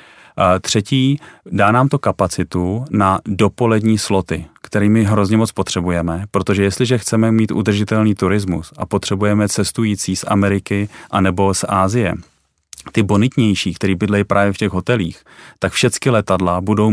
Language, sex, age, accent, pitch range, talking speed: Czech, male, 30-49, native, 95-110 Hz, 140 wpm